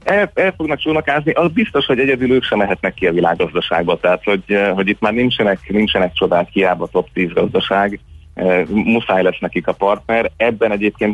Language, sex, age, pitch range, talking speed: Hungarian, male, 30-49, 85-105 Hz, 185 wpm